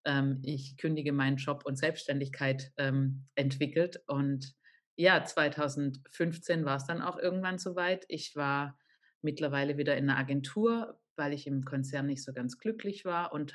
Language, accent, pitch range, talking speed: German, German, 140-160 Hz, 150 wpm